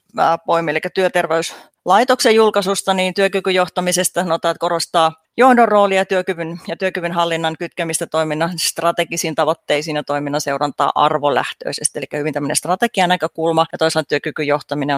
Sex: female